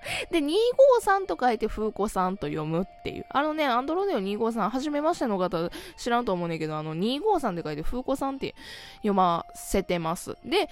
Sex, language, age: female, Japanese, 20-39